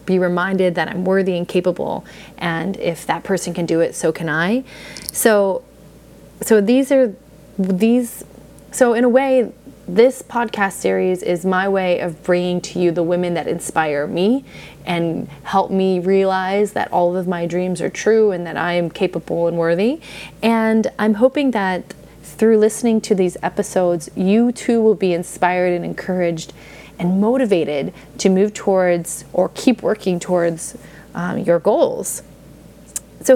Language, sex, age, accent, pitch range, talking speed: English, female, 20-39, American, 175-220 Hz, 160 wpm